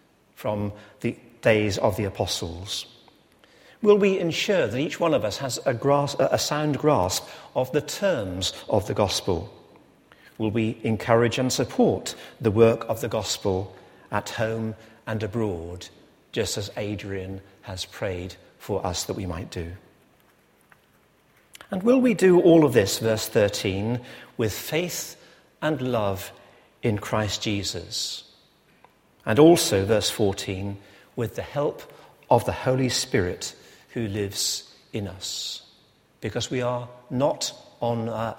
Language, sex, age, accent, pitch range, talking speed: English, male, 50-69, British, 100-125 Hz, 140 wpm